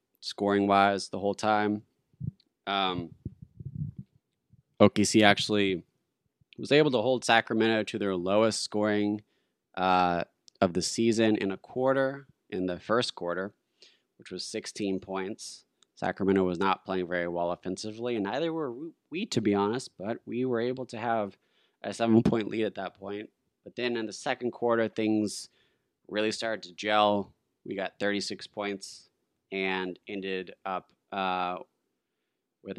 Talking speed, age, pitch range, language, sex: 140 wpm, 20-39, 95-115 Hz, English, male